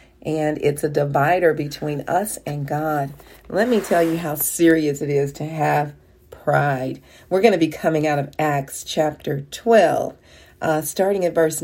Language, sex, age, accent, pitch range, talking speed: English, female, 40-59, American, 150-190 Hz, 170 wpm